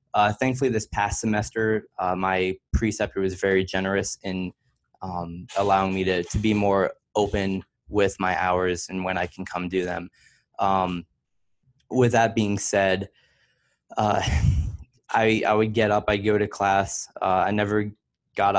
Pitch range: 95-105 Hz